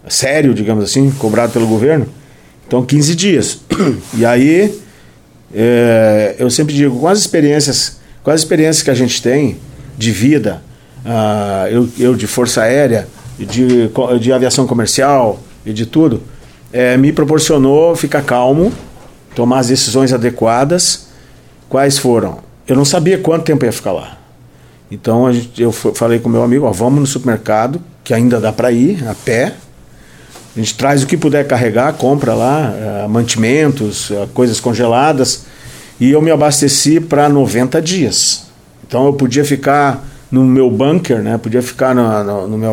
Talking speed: 160 wpm